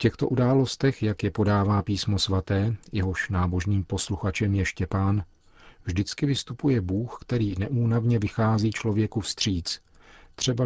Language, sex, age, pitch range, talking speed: Czech, male, 40-59, 95-110 Hz, 125 wpm